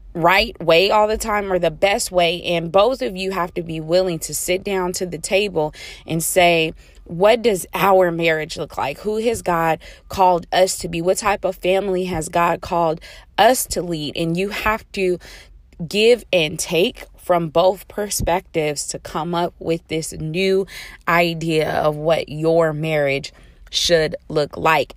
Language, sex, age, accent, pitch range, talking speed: English, female, 20-39, American, 160-185 Hz, 175 wpm